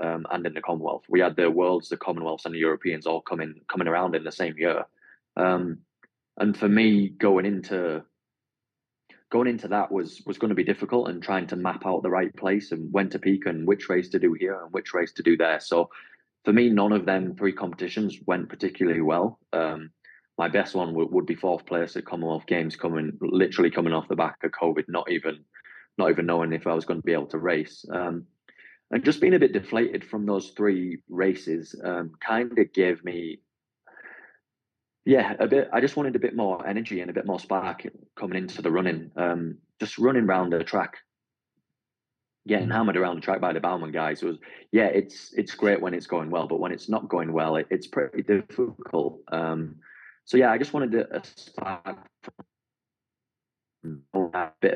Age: 20-39